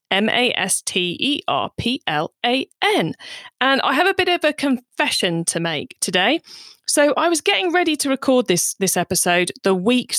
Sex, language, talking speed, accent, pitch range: female, English, 140 wpm, British, 180-250 Hz